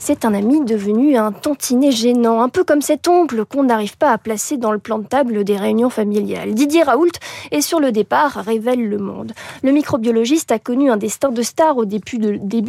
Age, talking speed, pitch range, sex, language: 20-39, 215 wpm, 220-295 Hz, female, French